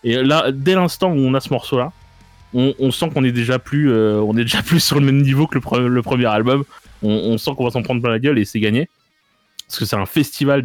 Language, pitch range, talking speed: French, 120-155 Hz, 250 wpm